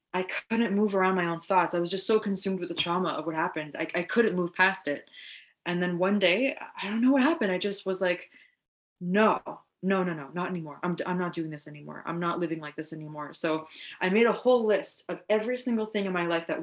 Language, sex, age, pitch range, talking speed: English, female, 20-39, 175-215 Hz, 250 wpm